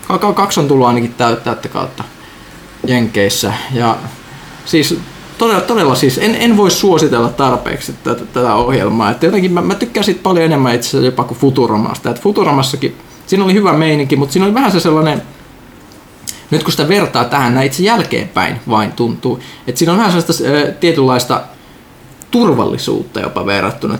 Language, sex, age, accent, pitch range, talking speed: Finnish, male, 20-39, native, 120-170 Hz, 160 wpm